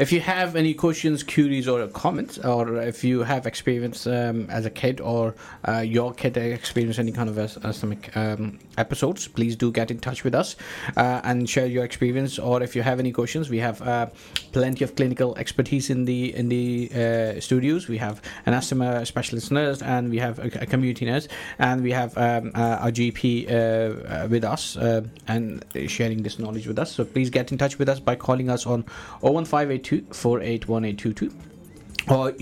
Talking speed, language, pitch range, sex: 190 wpm, English, 115-135 Hz, male